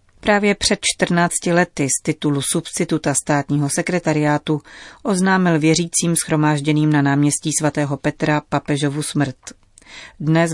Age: 30-49